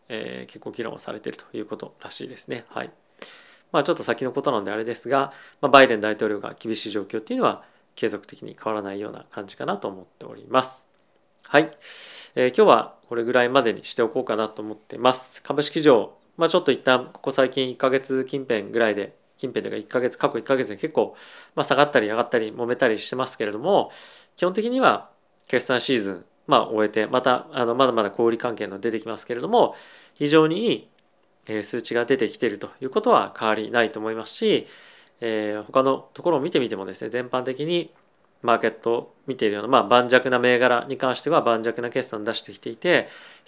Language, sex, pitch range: Japanese, male, 110-135 Hz